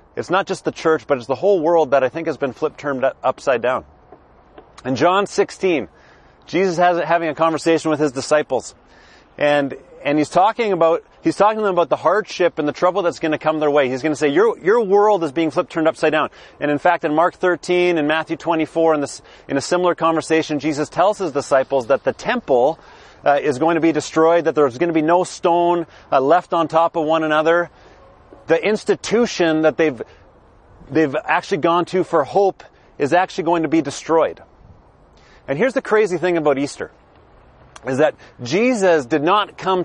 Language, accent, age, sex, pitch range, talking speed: English, American, 30-49, male, 150-180 Hz, 205 wpm